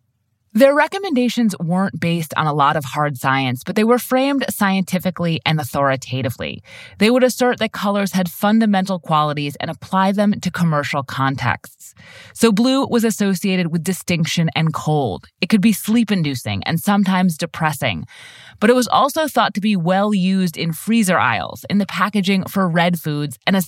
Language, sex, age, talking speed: English, female, 30-49, 165 wpm